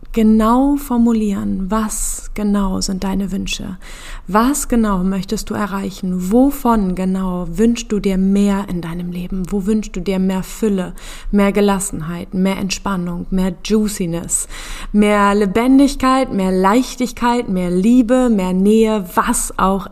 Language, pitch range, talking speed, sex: German, 185-225 Hz, 130 wpm, female